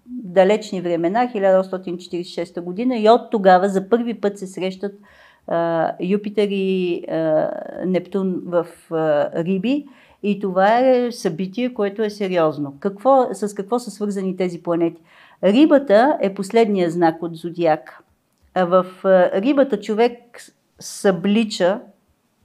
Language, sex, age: Bulgarian, female, 50-69